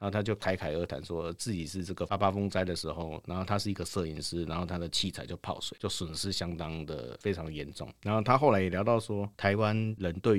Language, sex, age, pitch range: Chinese, male, 50-69, 85-110 Hz